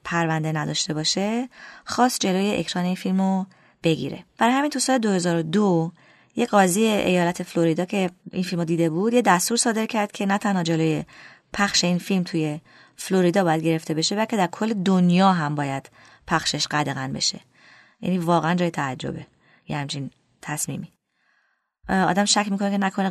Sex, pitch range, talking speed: female, 165-205 Hz, 155 wpm